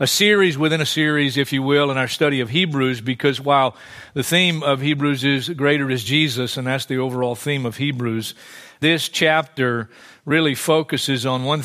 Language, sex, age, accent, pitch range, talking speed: English, male, 50-69, American, 140-175 Hz, 185 wpm